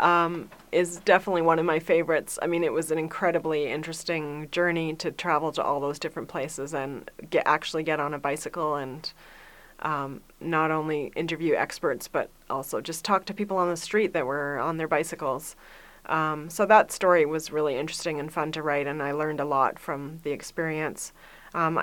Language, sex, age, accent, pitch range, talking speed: English, female, 30-49, American, 155-175 Hz, 185 wpm